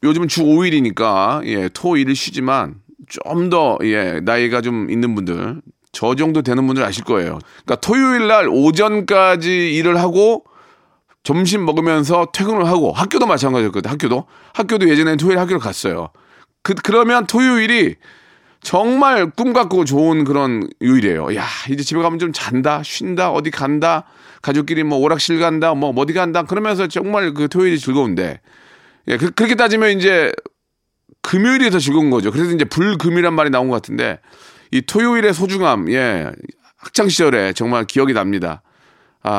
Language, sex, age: Korean, male, 40-59